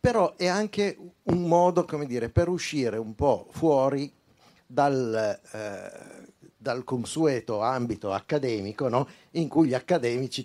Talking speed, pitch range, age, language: 130 wpm, 105-135 Hz, 50-69, Italian